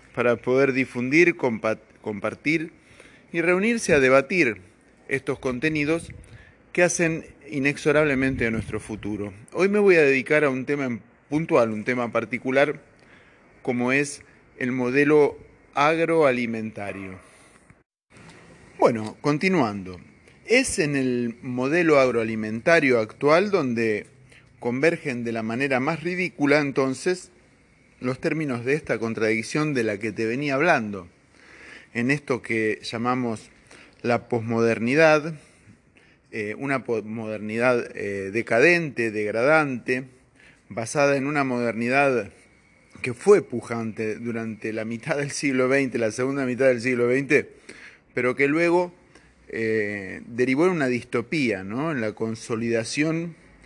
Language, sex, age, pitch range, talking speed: Spanish, male, 30-49, 115-145 Hz, 115 wpm